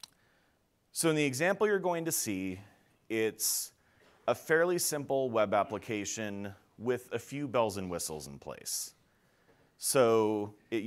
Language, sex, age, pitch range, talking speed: English, male, 30-49, 95-125 Hz, 135 wpm